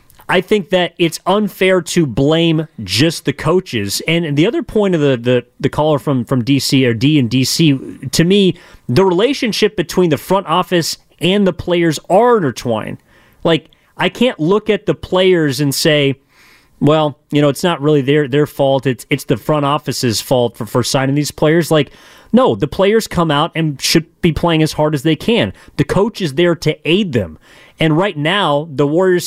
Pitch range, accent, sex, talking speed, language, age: 140-180 Hz, American, male, 195 wpm, English, 30-49